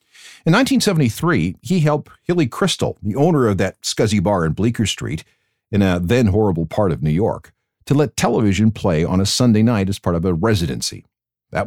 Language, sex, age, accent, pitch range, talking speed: English, male, 50-69, American, 85-115 Hz, 190 wpm